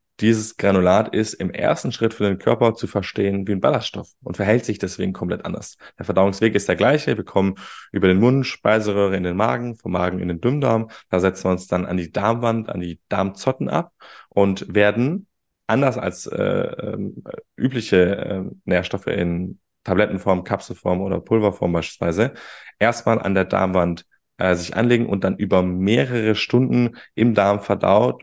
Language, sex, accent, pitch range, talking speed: German, male, German, 95-110 Hz, 170 wpm